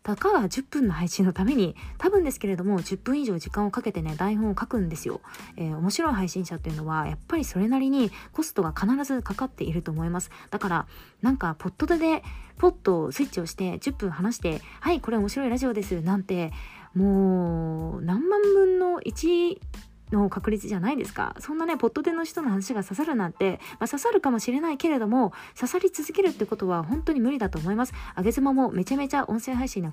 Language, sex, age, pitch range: Japanese, female, 20-39, 185-265 Hz